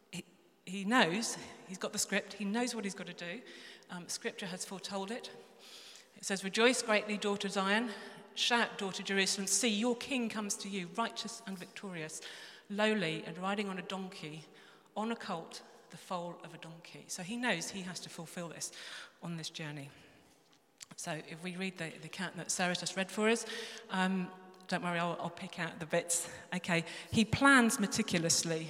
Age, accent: 40-59, British